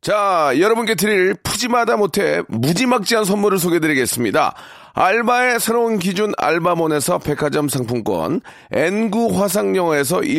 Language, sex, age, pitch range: Korean, male, 40-59, 160-215 Hz